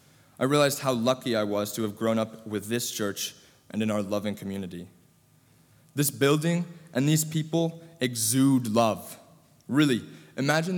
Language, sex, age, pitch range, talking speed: English, male, 20-39, 115-150 Hz, 150 wpm